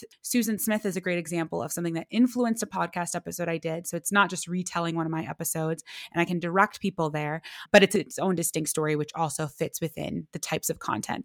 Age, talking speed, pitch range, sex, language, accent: 20-39, 235 wpm, 170-210 Hz, female, English, American